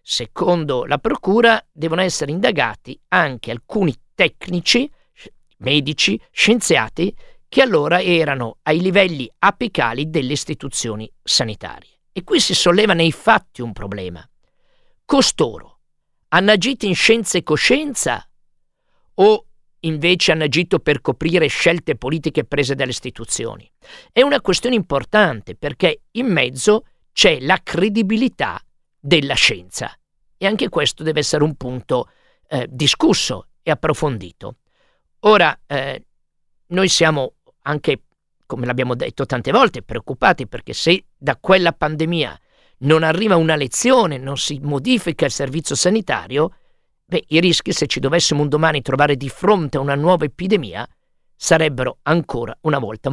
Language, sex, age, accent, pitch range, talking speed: Italian, male, 50-69, native, 140-190 Hz, 130 wpm